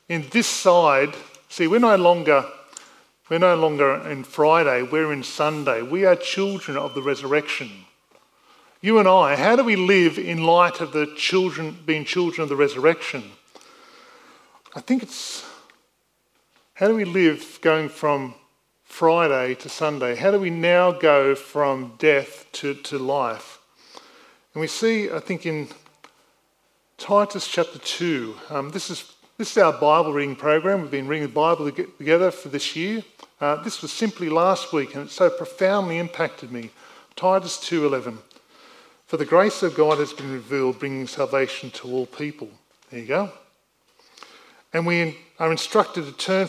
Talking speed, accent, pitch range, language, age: 160 wpm, Australian, 145-190 Hz, English, 40-59